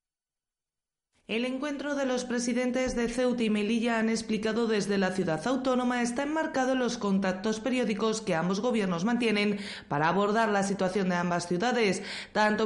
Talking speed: 155 wpm